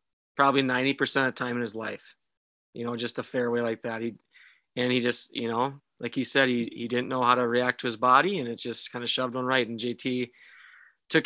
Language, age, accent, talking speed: English, 30-49, American, 245 wpm